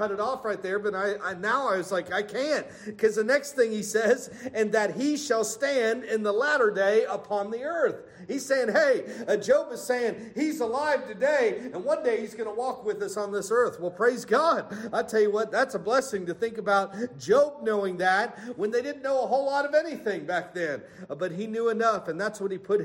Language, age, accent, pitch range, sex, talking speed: English, 50-69, American, 205-250 Hz, male, 240 wpm